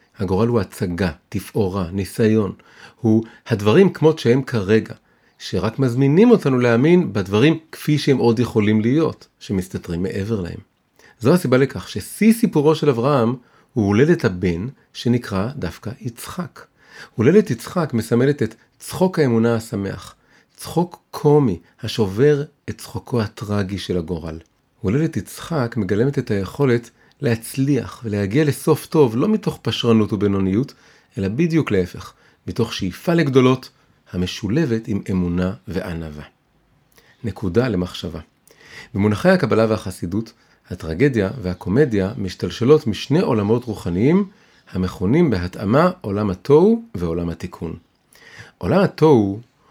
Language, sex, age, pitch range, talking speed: Hebrew, male, 40-59, 100-140 Hz, 110 wpm